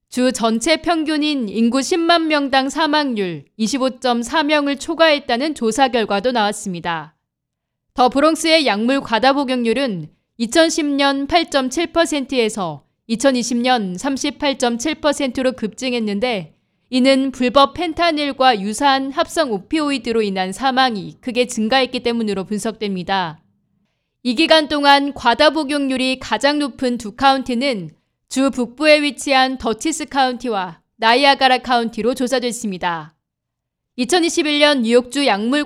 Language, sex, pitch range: Korean, female, 220-285 Hz